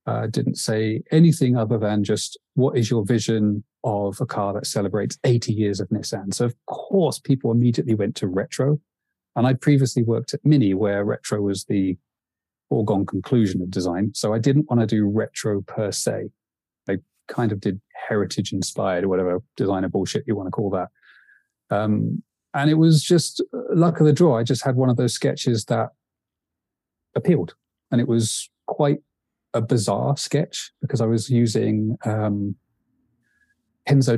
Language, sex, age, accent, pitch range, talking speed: English, male, 30-49, British, 105-125 Hz, 170 wpm